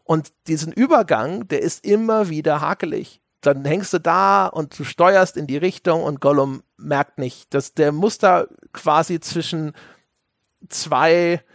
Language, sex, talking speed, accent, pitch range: German, male, 145 wpm, German, 150-190 Hz